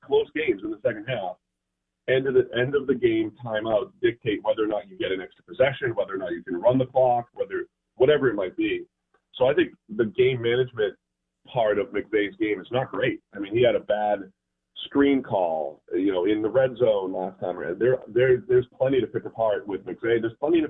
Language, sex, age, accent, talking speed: English, male, 40-59, American, 225 wpm